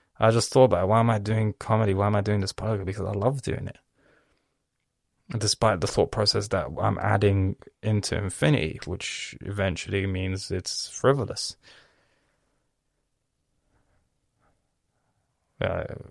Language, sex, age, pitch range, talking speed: English, male, 20-39, 95-110 Hz, 140 wpm